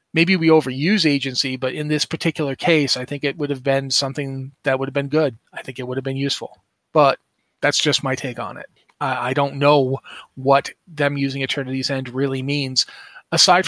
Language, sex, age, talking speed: English, male, 30-49, 205 wpm